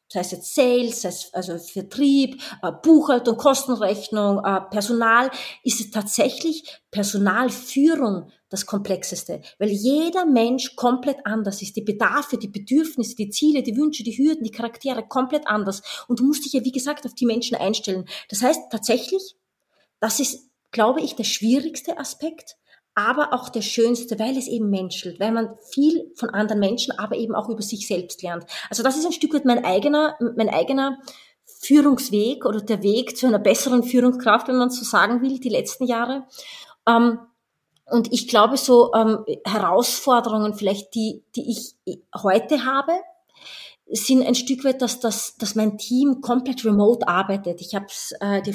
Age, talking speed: 30-49, 165 wpm